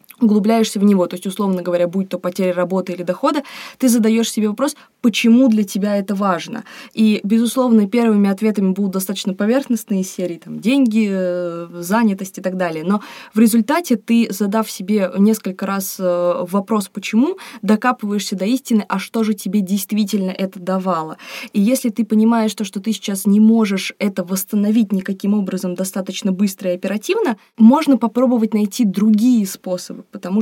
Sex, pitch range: female, 195-230 Hz